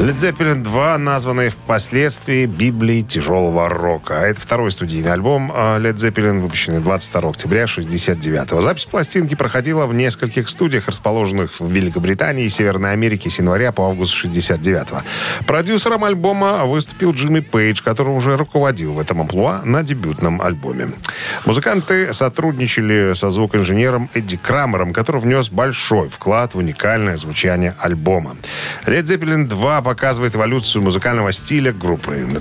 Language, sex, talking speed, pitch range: Russian, male, 130 wpm, 95-145 Hz